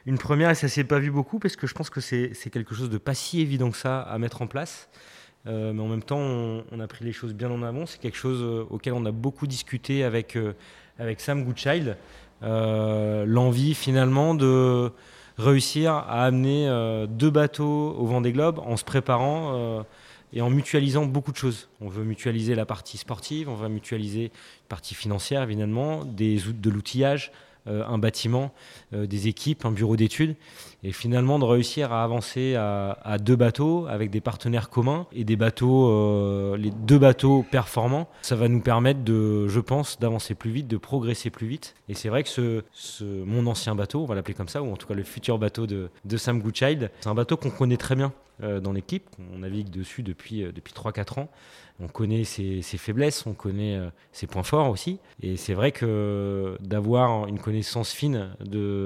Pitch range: 105-135 Hz